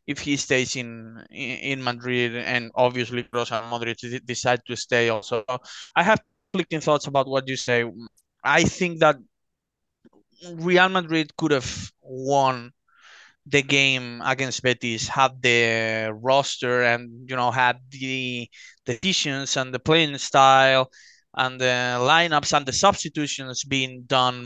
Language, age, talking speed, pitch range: English, 20-39, 135 wpm, 120-140 Hz